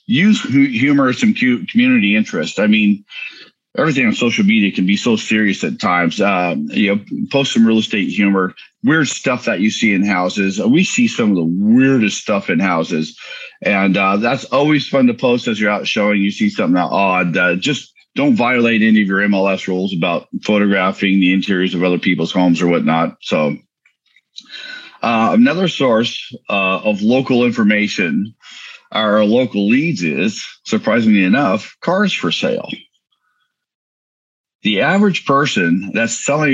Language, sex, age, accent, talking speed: English, male, 50-69, American, 160 wpm